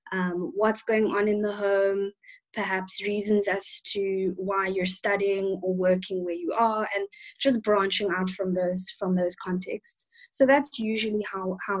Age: 20-39